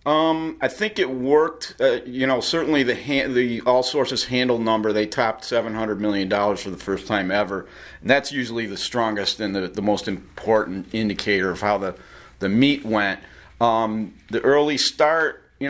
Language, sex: English, male